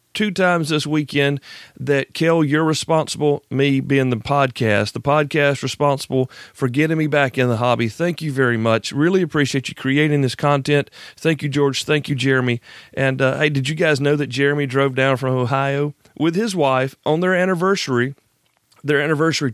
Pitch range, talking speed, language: 125-155 Hz, 180 wpm, English